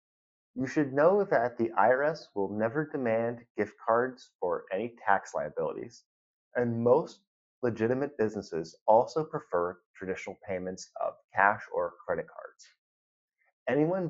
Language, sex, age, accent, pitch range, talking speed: English, male, 30-49, American, 105-150 Hz, 125 wpm